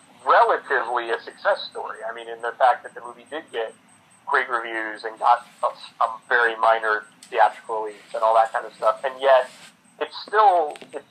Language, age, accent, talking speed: English, 40-59, American, 190 wpm